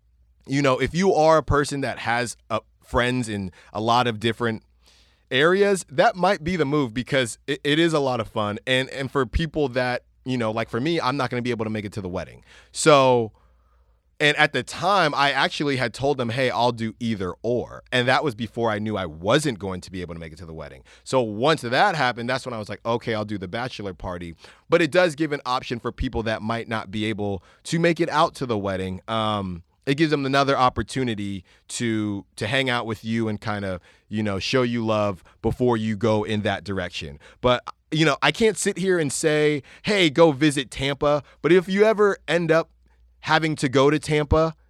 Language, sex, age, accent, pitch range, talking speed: English, male, 30-49, American, 105-145 Hz, 230 wpm